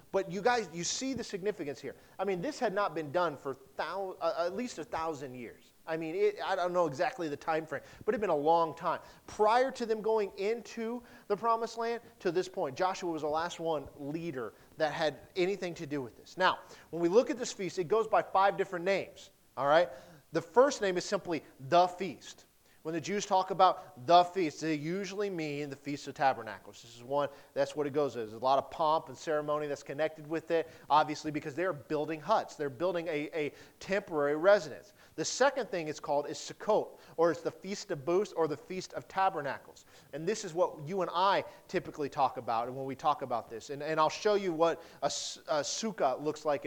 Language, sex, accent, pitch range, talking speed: English, male, American, 150-195 Hz, 220 wpm